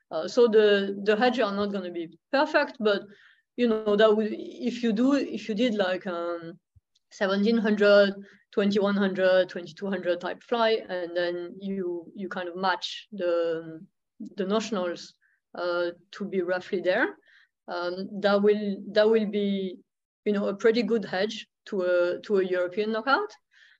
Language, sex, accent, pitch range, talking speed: English, female, French, 185-215 Hz, 155 wpm